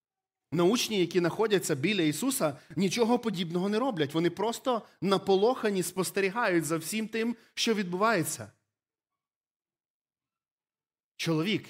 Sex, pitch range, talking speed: male, 140-195 Hz, 95 wpm